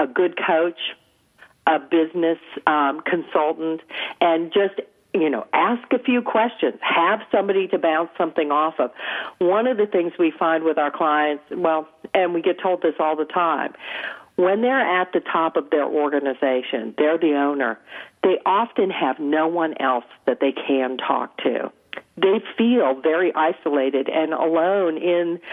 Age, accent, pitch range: 50-69, American, 155-200 Hz